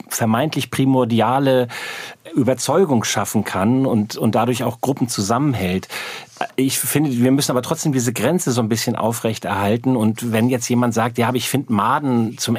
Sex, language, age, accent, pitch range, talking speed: male, German, 40-59, German, 110-130 Hz, 155 wpm